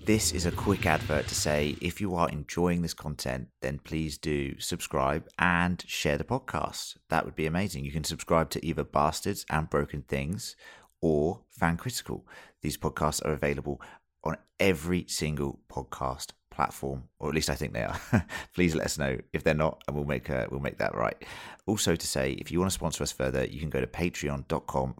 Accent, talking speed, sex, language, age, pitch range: British, 195 wpm, male, English, 30-49, 70-85 Hz